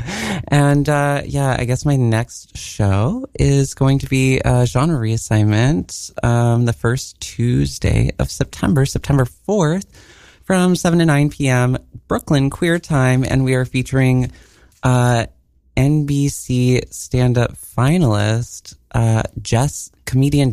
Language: English